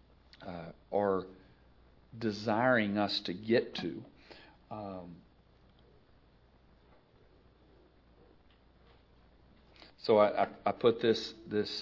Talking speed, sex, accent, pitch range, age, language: 75 wpm, male, American, 95-110 Hz, 40-59, English